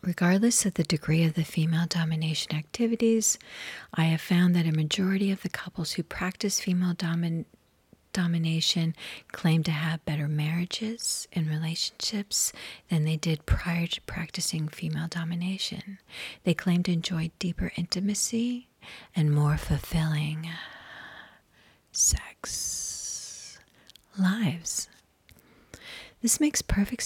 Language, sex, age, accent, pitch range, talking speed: English, female, 40-59, American, 160-195 Hz, 115 wpm